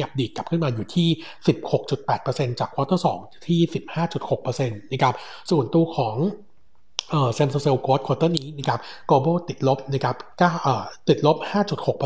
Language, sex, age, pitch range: Thai, male, 60-79, 125-155 Hz